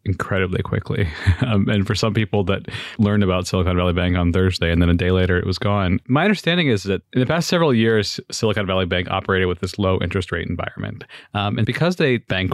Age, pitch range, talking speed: 30-49, 95-115 Hz, 225 wpm